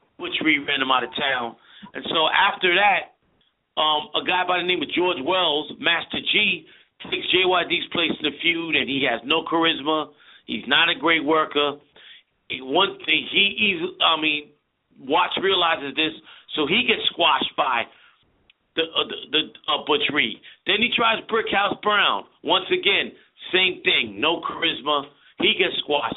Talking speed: 170 wpm